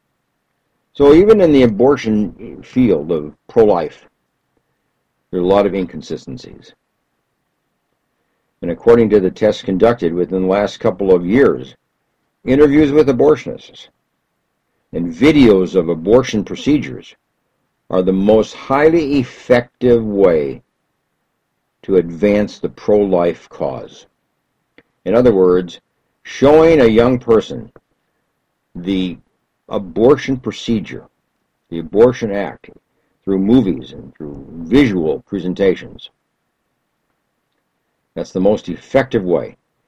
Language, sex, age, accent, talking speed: English, male, 60-79, American, 105 wpm